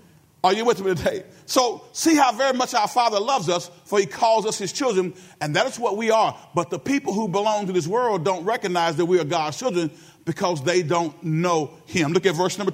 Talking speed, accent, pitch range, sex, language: 235 wpm, American, 180-255 Hz, male, English